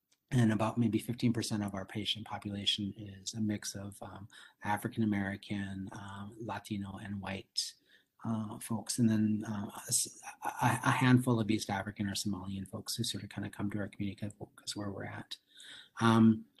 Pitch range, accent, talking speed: 100-120 Hz, American, 170 wpm